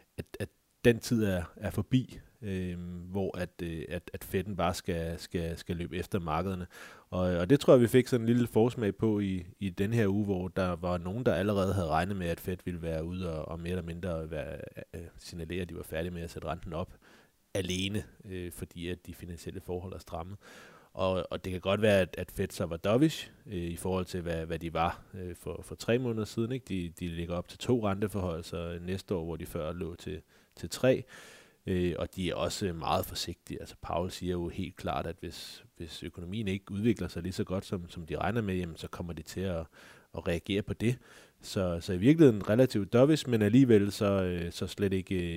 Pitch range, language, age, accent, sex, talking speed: 85-100 Hz, Danish, 30-49, native, male, 205 wpm